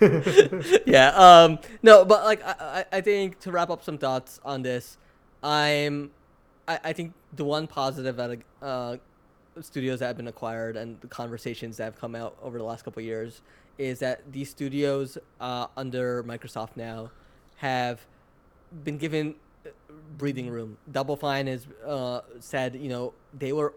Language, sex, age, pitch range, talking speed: English, male, 10-29, 125-150 Hz, 160 wpm